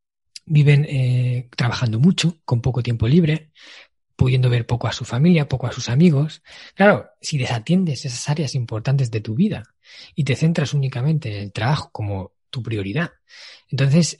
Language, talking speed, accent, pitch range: Spanish, 160 wpm, Spanish, 125-160 Hz